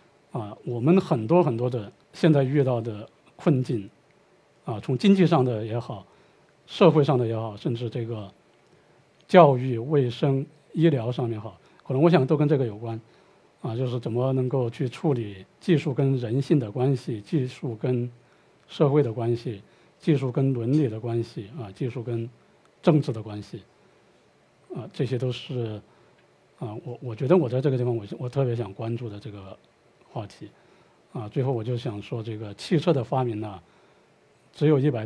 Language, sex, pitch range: Chinese, male, 115-145 Hz